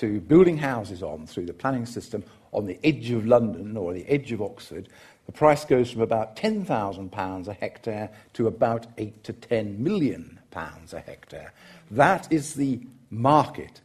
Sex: male